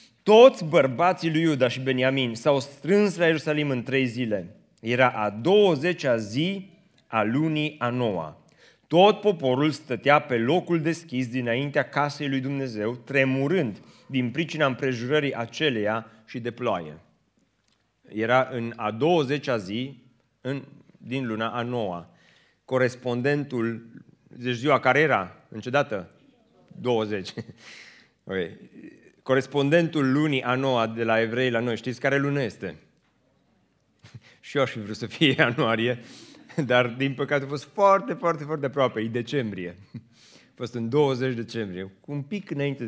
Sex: male